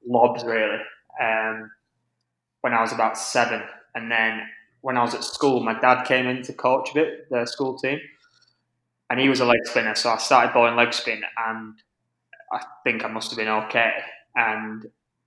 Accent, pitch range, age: British, 110-130 Hz, 20-39